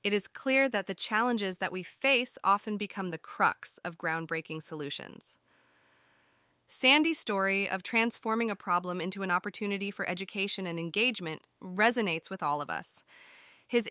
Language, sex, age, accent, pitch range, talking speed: English, female, 20-39, American, 180-230 Hz, 150 wpm